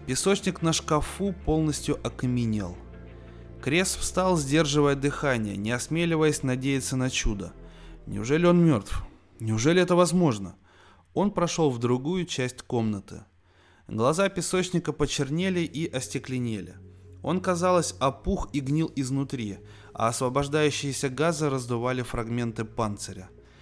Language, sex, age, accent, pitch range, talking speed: Russian, male, 20-39, native, 105-150 Hz, 110 wpm